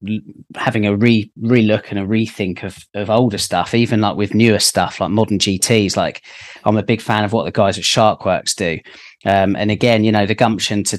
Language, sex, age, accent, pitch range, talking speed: English, male, 30-49, British, 100-110 Hz, 220 wpm